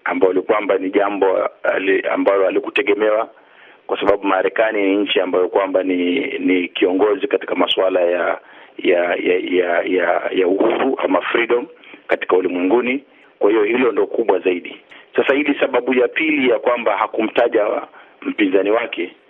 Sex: male